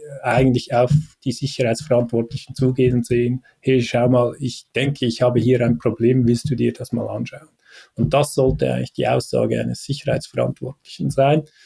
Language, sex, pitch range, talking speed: German, male, 115-135 Hz, 160 wpm